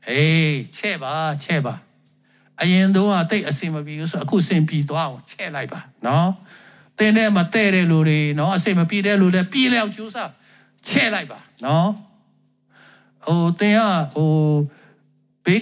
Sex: male